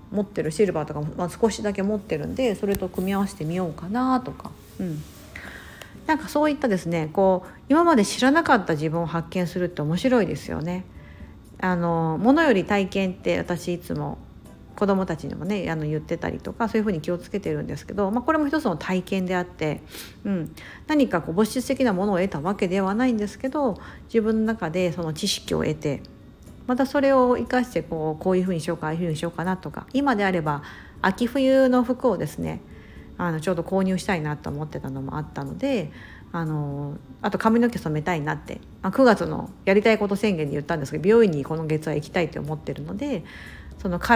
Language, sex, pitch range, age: Japanese, female, 155-220 Hz, 50-69